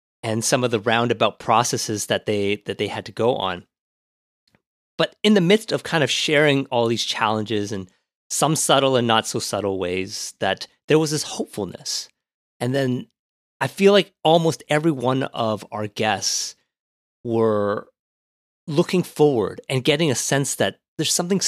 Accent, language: American, English